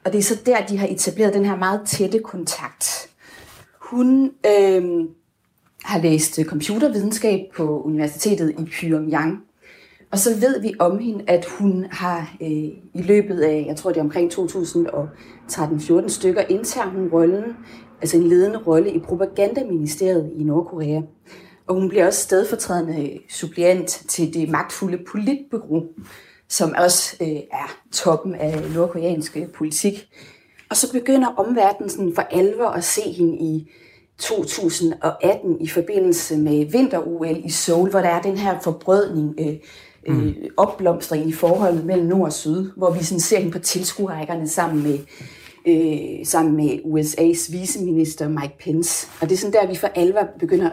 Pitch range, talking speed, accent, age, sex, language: 160-195 Hz, 150 wpm, native, 30-49, female, Danish